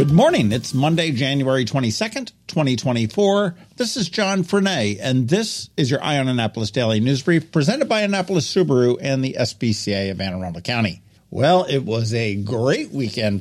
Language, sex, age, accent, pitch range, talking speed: English, male, 50-69, American, 115-170 Hz, 165 wpm